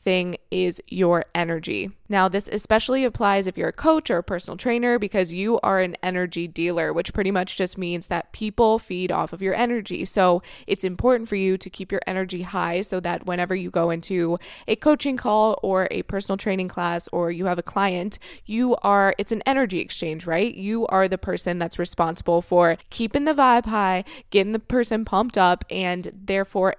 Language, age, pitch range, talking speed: English, 20-39, 180-220 Hz, 195 wpm